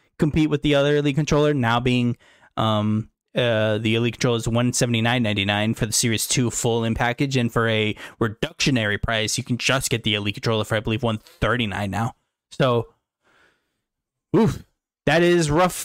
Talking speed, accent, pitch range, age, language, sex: 165 wpm, American, 115-160 Hz, 10-29, English, male